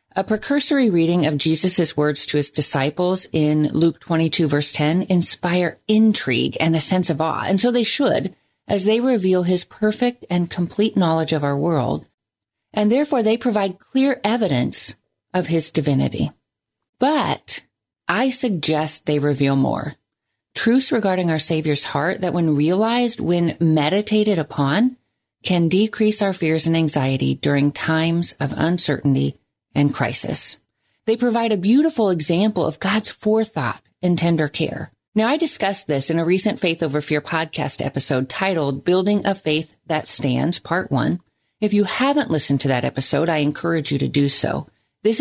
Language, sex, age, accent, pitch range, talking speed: English, female, 40-59, American, 150-200 Hz, 160 wpm